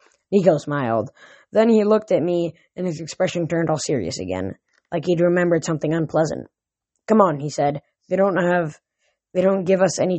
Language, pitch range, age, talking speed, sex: English, 160-190 Hz, 10-29, 185 wpm, female